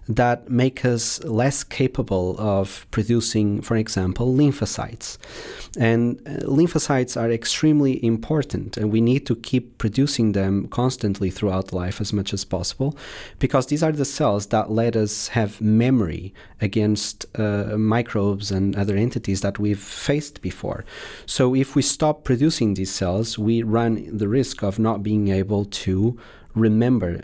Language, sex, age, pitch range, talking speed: English, male, 30-49, 100-130 Hz, 145 wpm